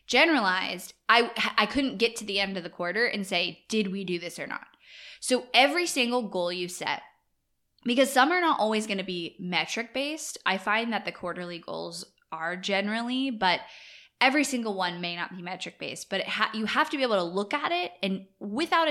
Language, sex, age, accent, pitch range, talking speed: English, female, 10-29, American, 180-235 Hz, 210 wpm